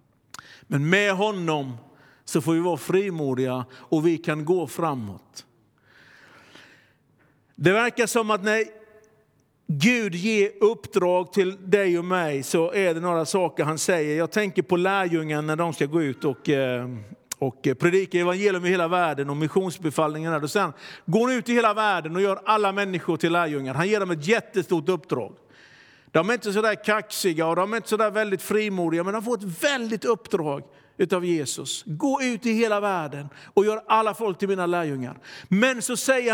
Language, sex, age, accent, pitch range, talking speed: Swedish, male, 50-69, native, 170-225 Hz, 170 wpm